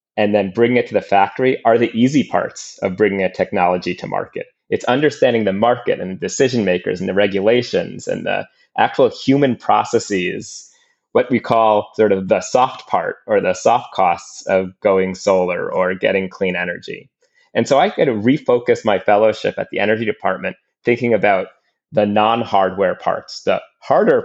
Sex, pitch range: male, 95-130 Hz